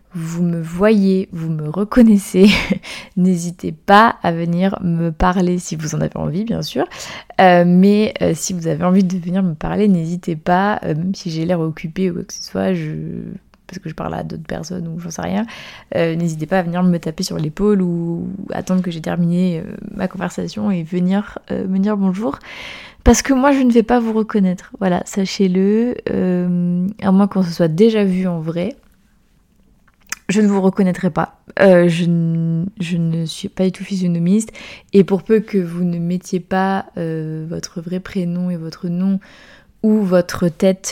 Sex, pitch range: female, 170-195 Hz